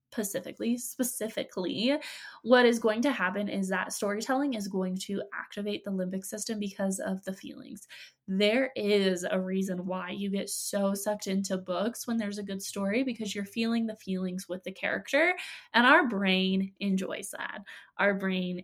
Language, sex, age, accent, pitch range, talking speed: English, female, 20-39, American, 195-235 Hz, 165 wpm